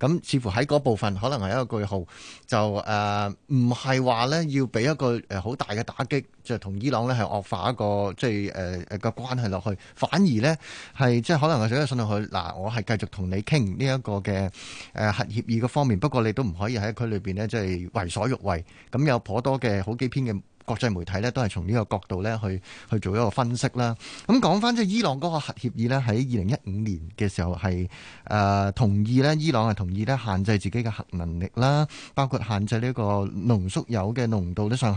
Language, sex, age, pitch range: Chinese, male, 30-49, 100-130 Hz